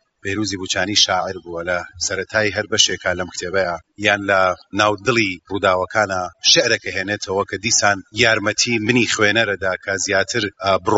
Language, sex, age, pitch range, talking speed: Persian, male, 40-59, 95-110 Hz, 130 wpm